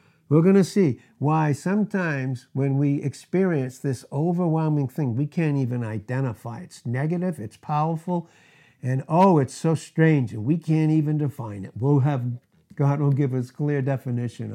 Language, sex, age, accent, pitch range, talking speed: English, male, 60-79, American, 120-155 Hz, 160 wpm